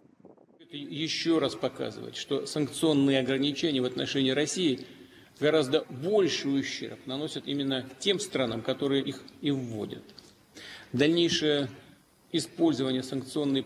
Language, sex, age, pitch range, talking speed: English, male, 40-59, 125-145 Hz, 100 wpm